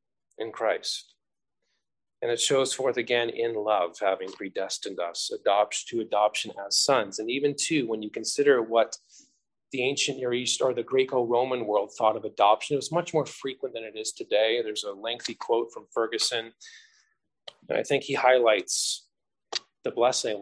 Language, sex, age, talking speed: English, male, 30-49, 170 wpm